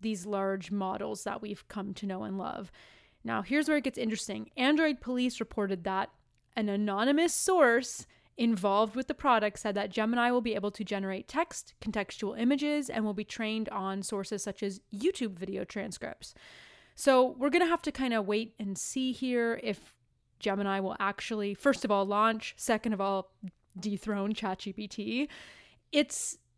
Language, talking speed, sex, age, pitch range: English, 170 wpm, female, 20-39, 200-260 Hz